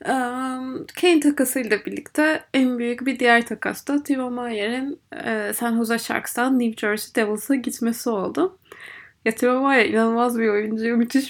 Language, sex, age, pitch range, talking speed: Turkish, female, 20-39, 225-280 Hz, 150 wpm